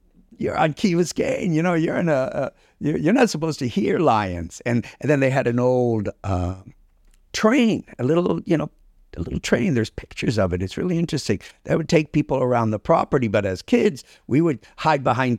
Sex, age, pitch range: male, 60-79, 100-120 Hz